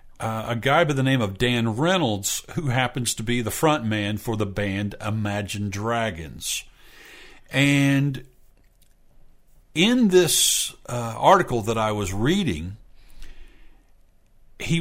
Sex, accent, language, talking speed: male, American, English, 125 wpm